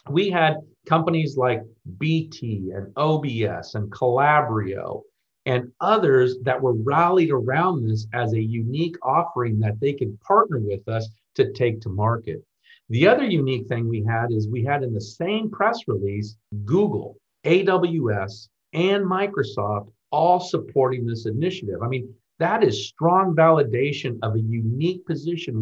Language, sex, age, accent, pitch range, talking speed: English, male, 50-69, American, 115-170 Hz, 145 wpm